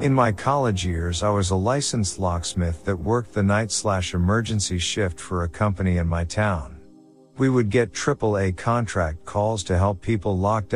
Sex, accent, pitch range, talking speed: male, American, 90-110 Hz, 175 wpm